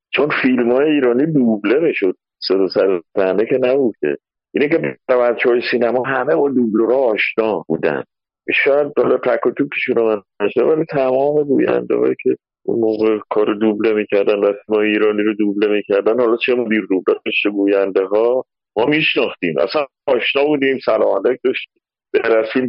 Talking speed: 150 wpm